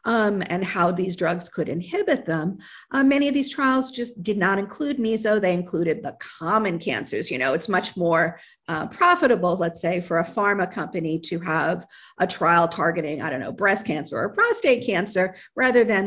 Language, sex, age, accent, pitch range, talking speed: English, female, 50-69, American, 170-230 Hz, 190 wpm